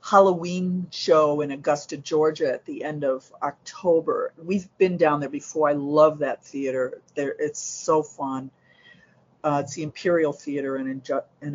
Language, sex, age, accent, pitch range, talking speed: English, female, 50-69, American, 140-175 Hz, 155 wpm